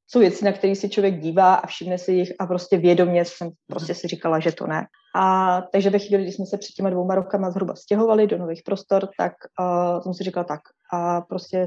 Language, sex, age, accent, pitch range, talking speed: Czech, female, 20-39, native, 180-200 Hz, 230 wpm